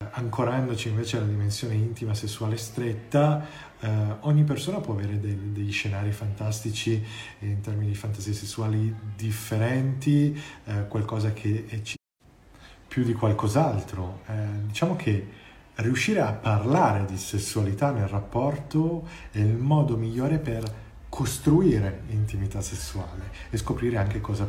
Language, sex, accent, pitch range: Italian, male, native, 105-120 Hz